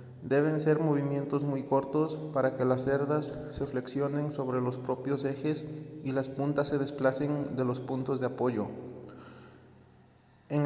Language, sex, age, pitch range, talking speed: Spanish, male, 30-49, 130-145 Hz, 145 wpm